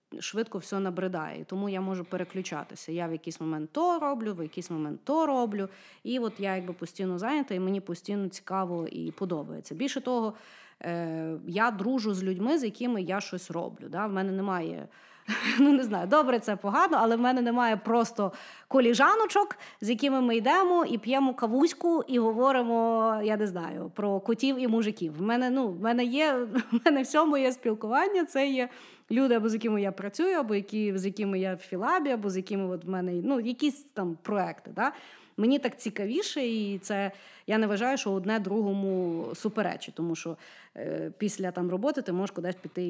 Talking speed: 185 wpm